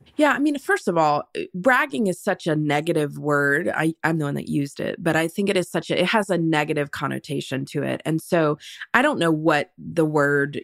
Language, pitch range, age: English, 150-185 Hz, 20-39